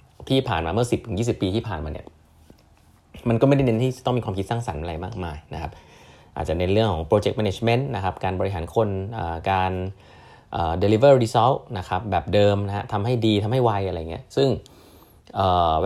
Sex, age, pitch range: male, 20-39, 85-115 Hz